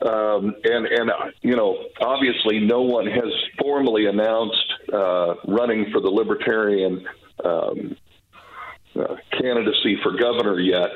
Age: 50-69